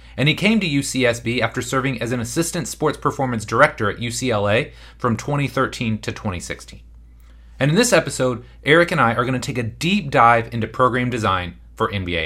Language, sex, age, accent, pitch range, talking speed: English, male, 30-49, American, 95-145 Hz, 185 wpm